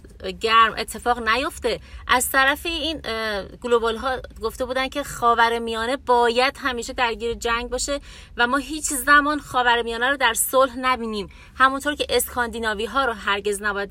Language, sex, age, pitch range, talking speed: Persian, female, 30-49, 220-275 Hz, 150 wpm